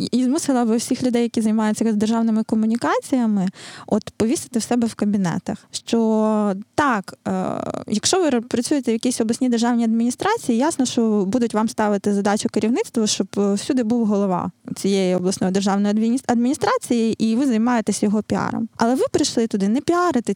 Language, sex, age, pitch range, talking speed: Ukrainian, female, 20-39, 205-250 Hz, 155 wpm